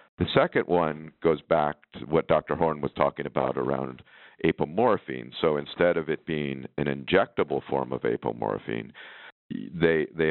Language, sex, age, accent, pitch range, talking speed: English, male, 50-69, American, 70-85 Hz, 150 wpm